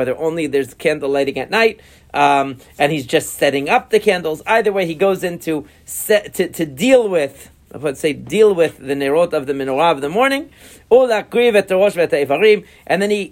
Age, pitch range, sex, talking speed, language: 40-59, 150-200 Hz, male, 190 wpm, English